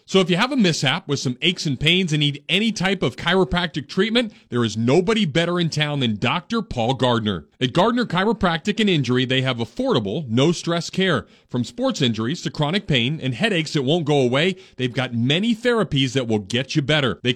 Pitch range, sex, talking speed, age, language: 120-185 Hz, male, 205 wpm, 40-59, English